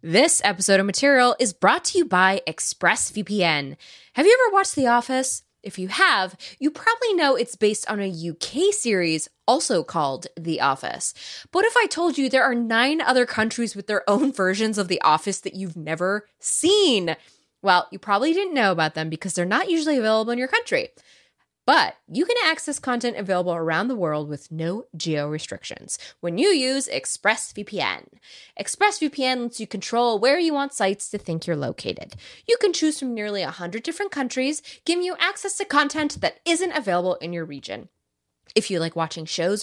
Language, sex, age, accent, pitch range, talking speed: English, female, 20-39, American, 185-295 Hz, 185 wpm